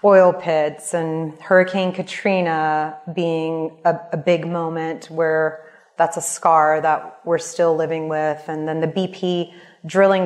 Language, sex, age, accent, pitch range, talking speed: English, female, 30-49, American, 160-185 Hz, 140 wpm